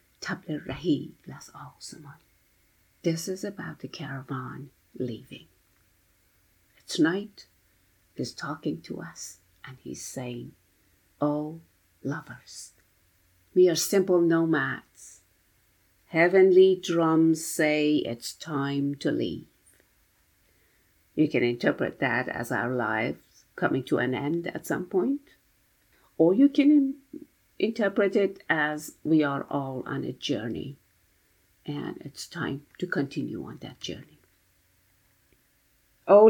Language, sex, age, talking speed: English, female, 50-69, 100 wpm